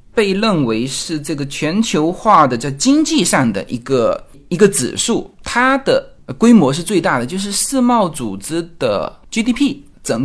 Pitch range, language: 130-210 Hz, Chinese